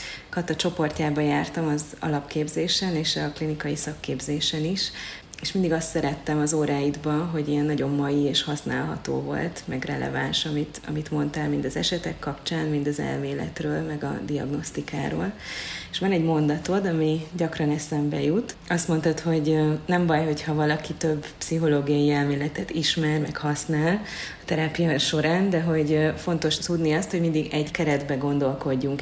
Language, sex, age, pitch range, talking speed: Hungarian, female, 30-49, 145-160 Hz, 150 wpm